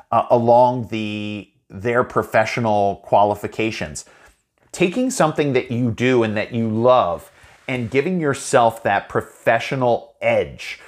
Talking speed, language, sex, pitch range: 115 wpm, English, male, 110-135 Hz